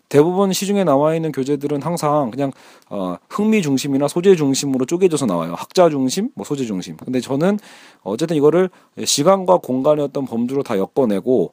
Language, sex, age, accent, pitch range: Korean, male, 40-59, native, 130-170 Hz